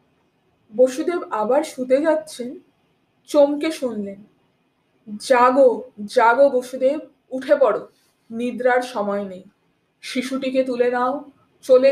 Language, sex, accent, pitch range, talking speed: Bengali, female, native, 250-350 Hz, 90 wpm